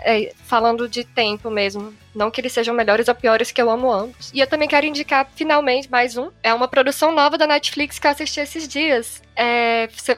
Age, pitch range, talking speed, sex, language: 10-29, 235-280 Hz, 220 wpm, female, Portuguese